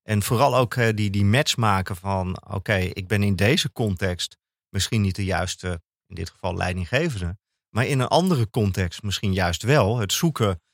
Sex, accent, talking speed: male, Dutch, 185 wpm